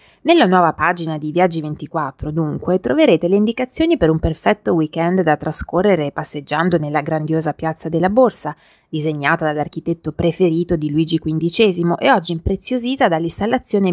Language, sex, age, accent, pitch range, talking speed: Italian, female, 30-49, native, 160-200 Hz, 135 wpm